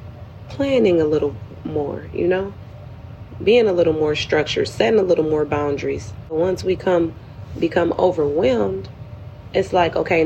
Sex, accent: female, American